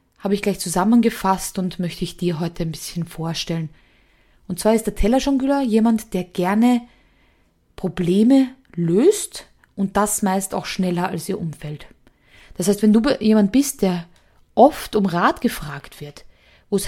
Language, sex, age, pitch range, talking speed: German, female, 20-39, 185-245 Hz, 155 wpm